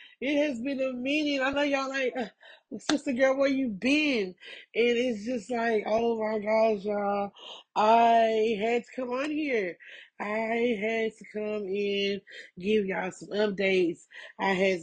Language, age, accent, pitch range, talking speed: English, 20-39, American, 185-230 Hz, 160 wpm